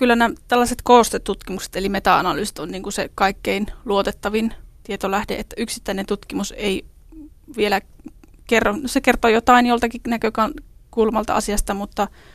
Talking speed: 125 wpm